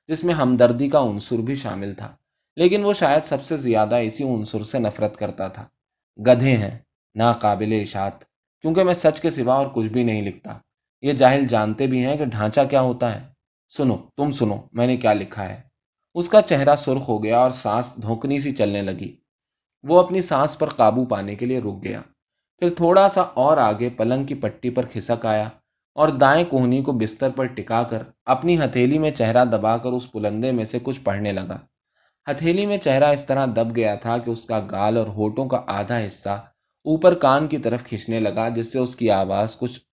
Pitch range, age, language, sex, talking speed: 110-140 Hz, 20-39, Urdu, male, 205 wpm